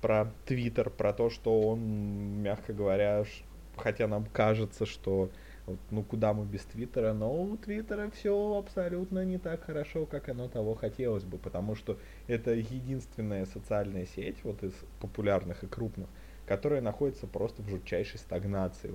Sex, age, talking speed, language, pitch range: male, 20-39, 150 wpm, Russian, 95-120 Hz